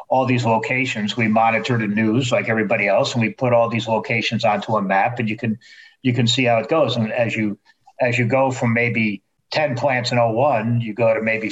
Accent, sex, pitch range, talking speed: American, male, 115-140 Hz, 230 wpm